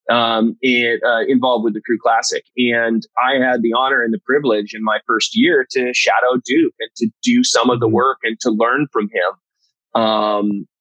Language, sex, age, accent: English, male, 30-49, American